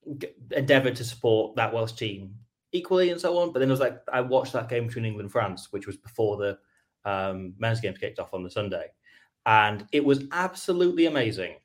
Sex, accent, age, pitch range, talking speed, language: male, British, 20-39, 105-125 Hz, 205 wpm, English